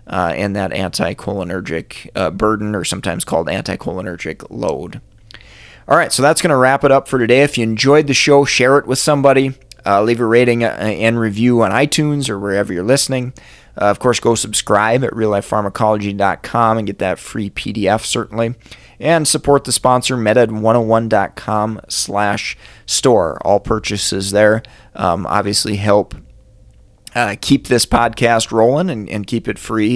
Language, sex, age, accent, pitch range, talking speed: English, male, 30-49, American, 105-125 Hz, 155 wpm